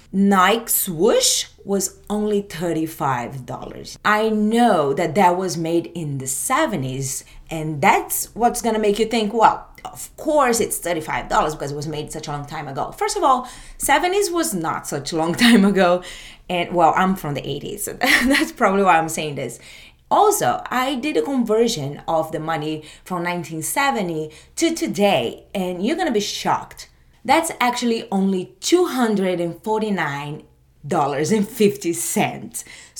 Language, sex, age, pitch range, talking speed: English, female, 30-49, 160-240 Hz, 150 wpm